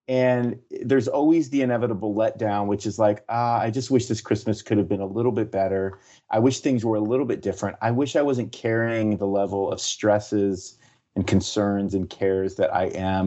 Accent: American